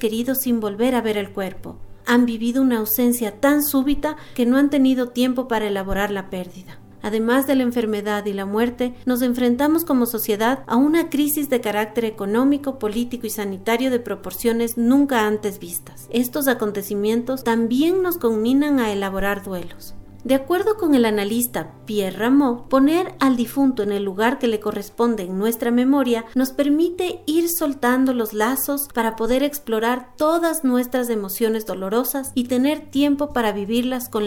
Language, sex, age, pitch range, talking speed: Spanish, female, 40-59, 210-270 Hz, 165 wpm